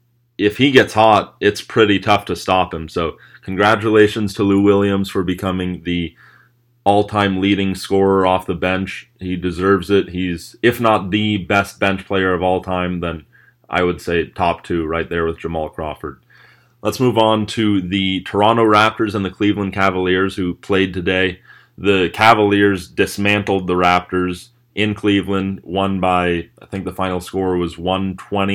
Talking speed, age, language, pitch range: 165 wpm, 30-49, English, 95-110 Hz